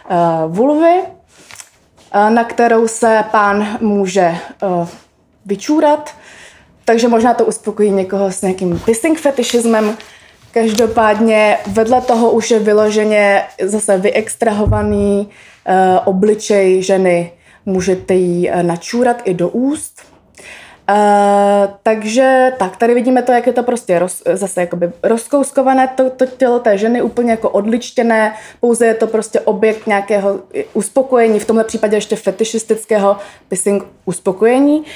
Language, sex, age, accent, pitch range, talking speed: Czech, female, 20-39, native, 195-235 Hz, 115 wpm